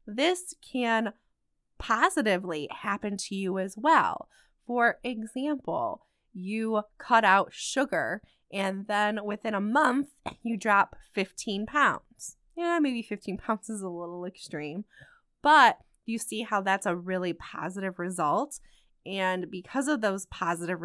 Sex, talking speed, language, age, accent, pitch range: female, 130 wpm, English, 20-39, American, 190-245 Hz